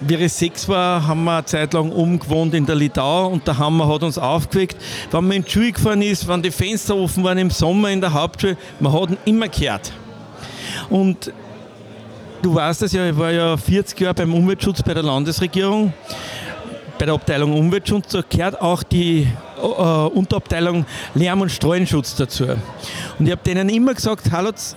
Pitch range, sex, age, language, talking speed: 145-185 Hz, male, 50-69, German, 185 wpm